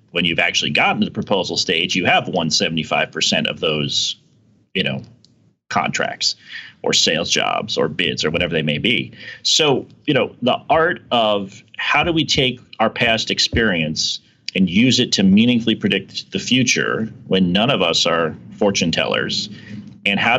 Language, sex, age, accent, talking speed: English, male, 40-59, American, 165 wpm